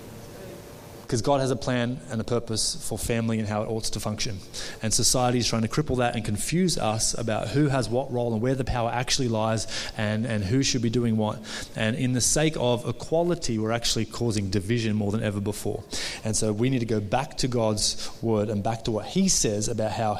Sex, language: male, English